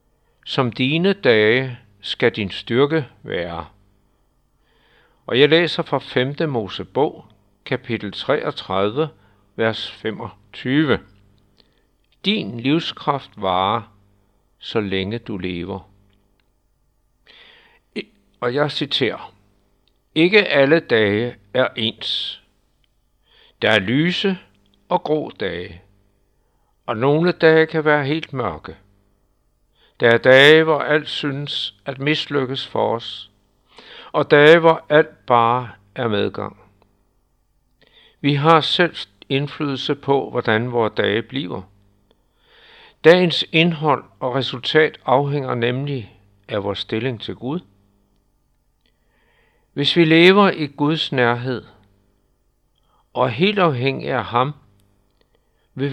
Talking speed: 100 wpm